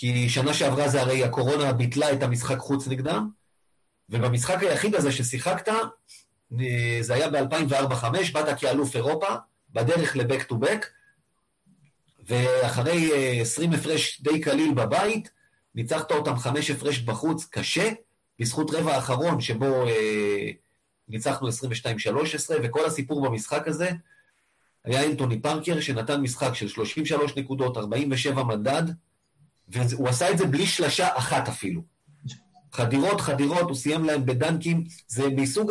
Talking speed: 120 wpm